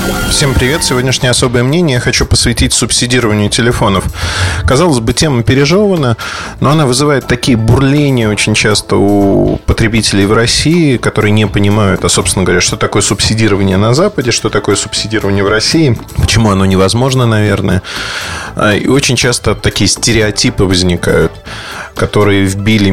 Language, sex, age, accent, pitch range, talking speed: Russian, male, 20-39, native, 95-125 Hz, 140 wpm